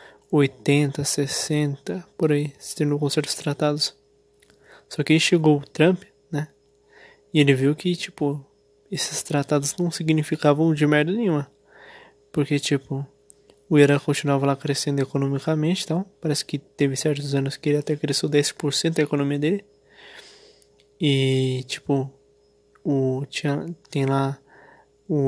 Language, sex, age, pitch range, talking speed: Portuguese, male, 20-39, 140-155 Hz, 130 wpm